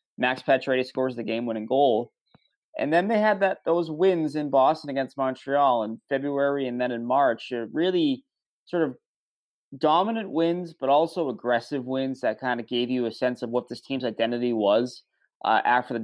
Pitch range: 120-150 Hz